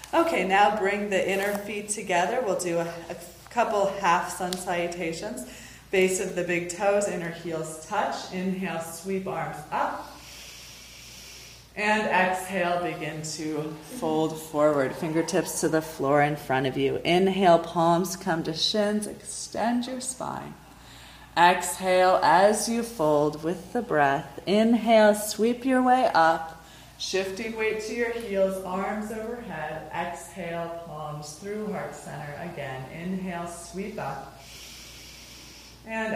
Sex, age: female, 30-49